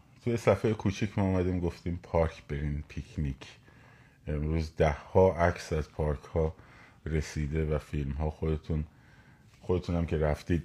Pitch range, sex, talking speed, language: 75-110 Hz, male, 135 wpm, Persian